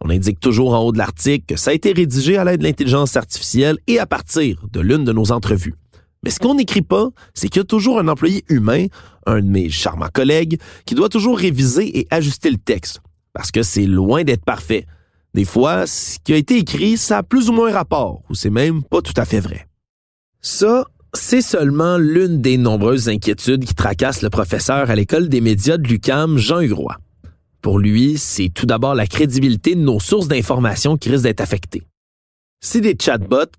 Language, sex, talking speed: French, male, 205 wpm